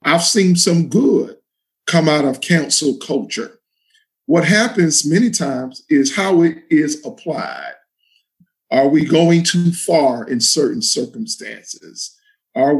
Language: English